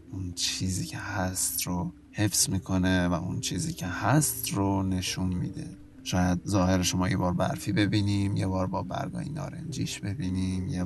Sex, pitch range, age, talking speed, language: male, 90-105 Hz, 20-39, 160 wpm, Persian